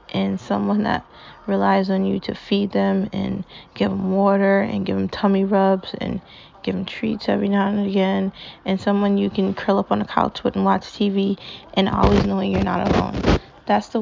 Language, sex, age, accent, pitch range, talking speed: English, female, 10-29, American, 165-195 Hz, 200 wpm